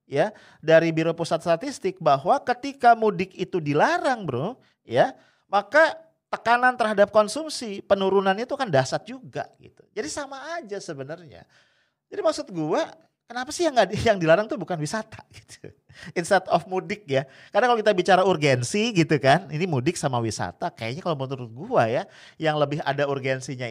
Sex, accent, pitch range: male, Indonesian, 145-220 Hz